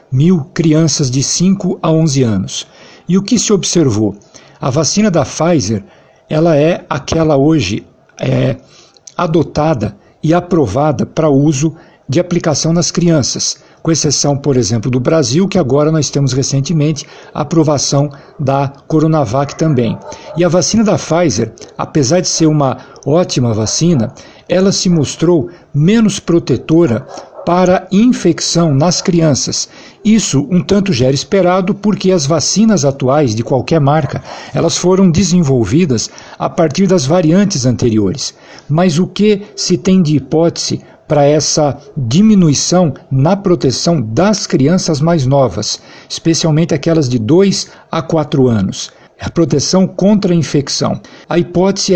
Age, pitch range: 60-79, 140-180 Hz